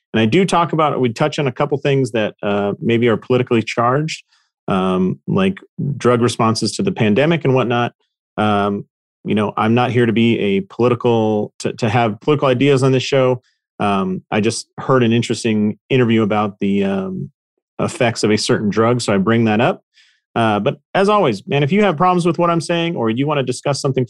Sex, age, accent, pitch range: male, 40-59, American, 105-145 Hz